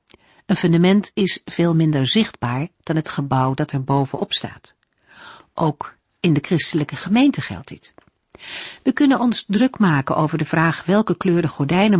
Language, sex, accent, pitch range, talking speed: Dutch, female, Dutch, 145-195 Hz, 160 wpm